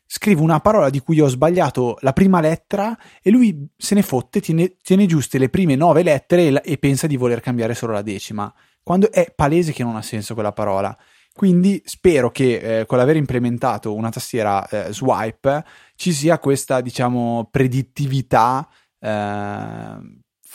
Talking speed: 165 wpm